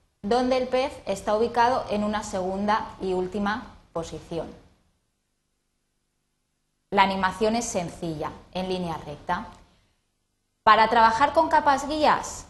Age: 20-39